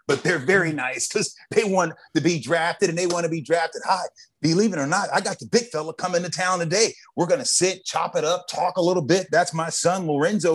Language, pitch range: English, 155-200 Hz